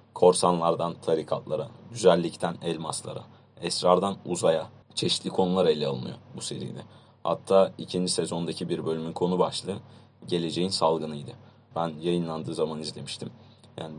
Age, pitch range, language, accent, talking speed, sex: 30-49, 80-95 Hz, Turkish, native, 110 wpm, male